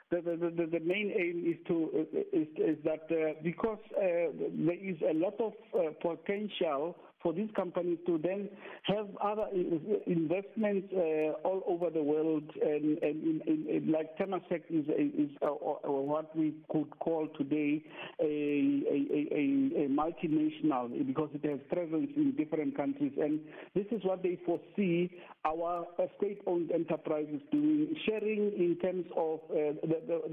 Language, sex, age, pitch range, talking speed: English, male, 50-69, 155-195 Hz, 160 wpm